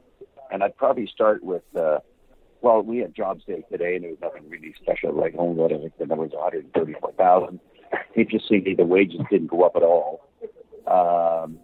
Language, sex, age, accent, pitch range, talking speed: English, male, 50-69, American, 85-120 Hz, 195 wpm